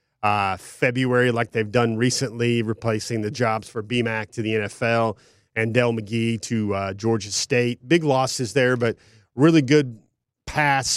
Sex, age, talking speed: male, 30-49, 155 wpm